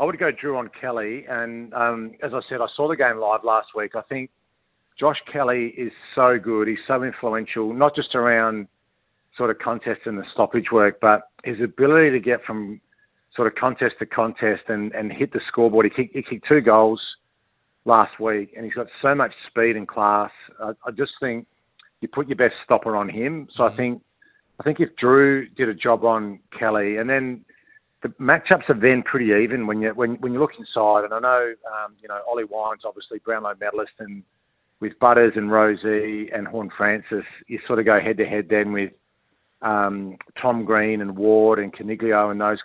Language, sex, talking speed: English, male, 205 wpm